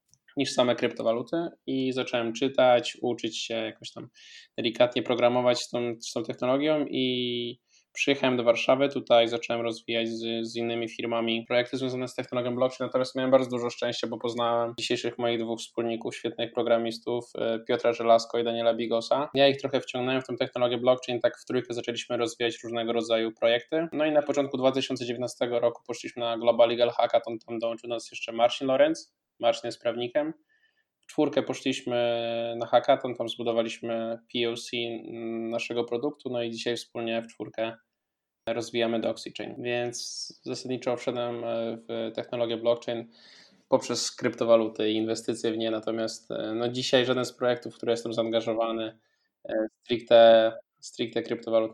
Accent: native